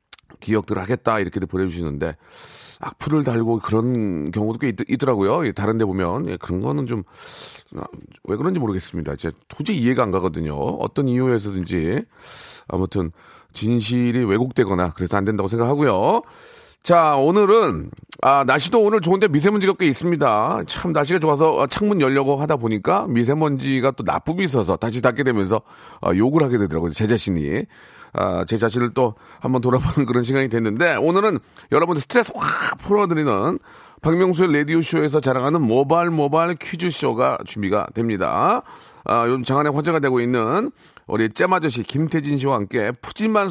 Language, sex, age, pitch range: Korean, male, 40-59, 110-155 Hz